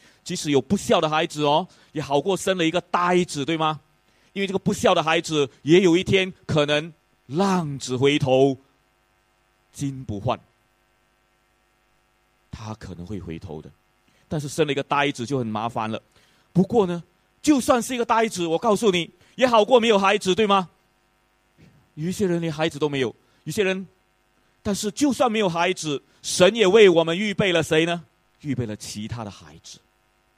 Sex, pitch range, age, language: male, 120-185 Hz, 30-49, English